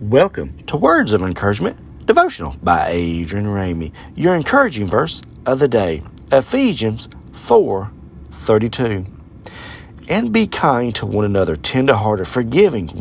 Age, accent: 40-59, American